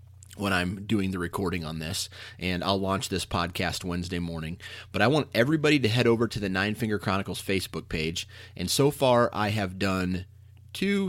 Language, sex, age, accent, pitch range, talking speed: English, male, 30-49, American, 100-115 Hz, 190 wpm